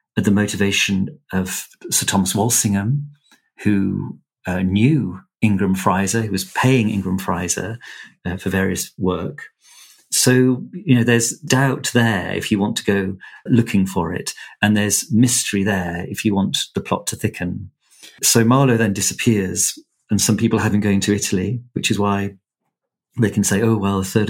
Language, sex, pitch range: English, male, 95-115 Hz